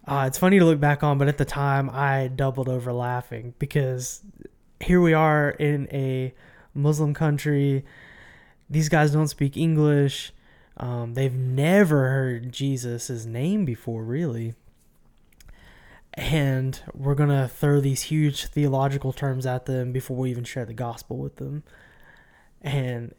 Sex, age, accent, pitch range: male, 20-39, American, 125-145 Hz